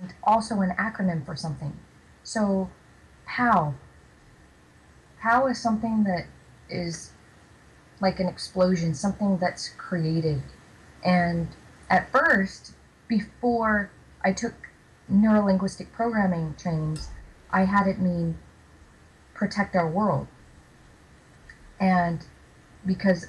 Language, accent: English, American